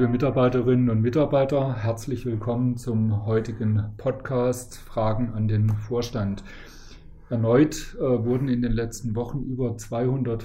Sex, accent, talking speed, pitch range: male, German, 125 wpm, 110-125 Hz